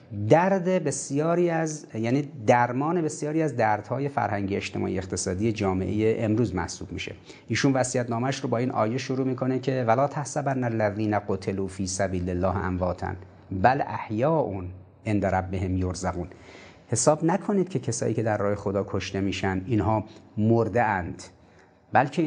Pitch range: 105-145 Hz